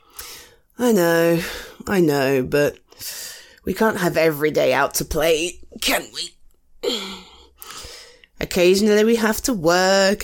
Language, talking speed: English, 115 wpm